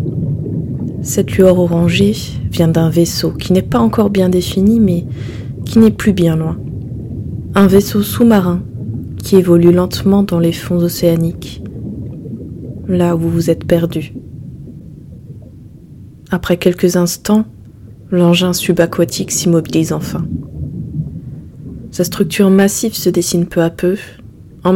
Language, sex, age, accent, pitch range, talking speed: French, female, 20-39, French, 155-185 Hz, 120 wpm